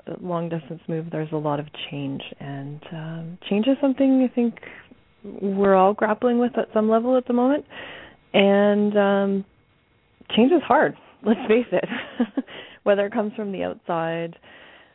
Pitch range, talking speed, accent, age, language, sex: 175-225 Hz, 155 wpm, American, 30-49, English, female